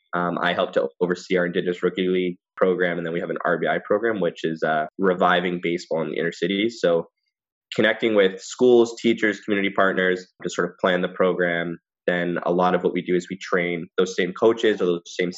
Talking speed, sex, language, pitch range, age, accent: 215 wpm, male, English, 90-100 Hz, 20-39, American